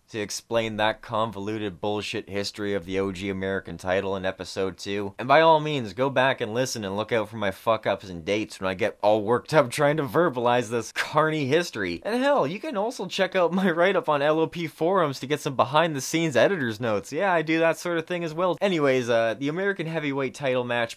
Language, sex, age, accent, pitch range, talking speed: English, male, 20-39, American, 105-155 Hz, 220 wpm